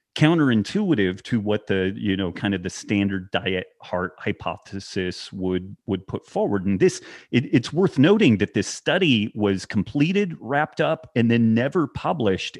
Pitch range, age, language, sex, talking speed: 95-120 Hz, 30-49, English, male, 160 wpm